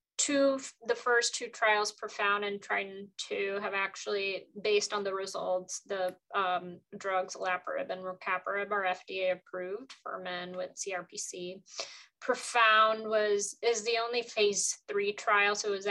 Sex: female